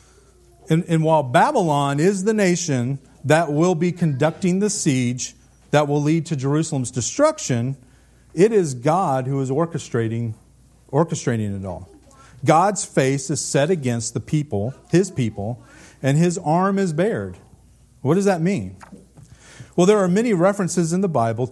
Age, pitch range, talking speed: 40-59, 125-170 Hz, 150 wpm